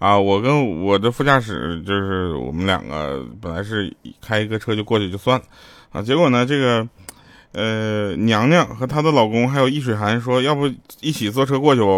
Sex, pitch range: male, 105-155 Hz